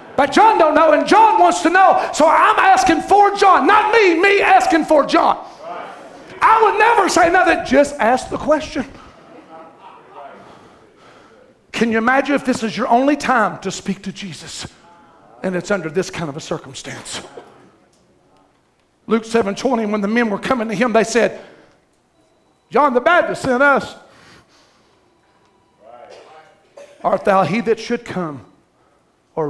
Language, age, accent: English, 50-69, American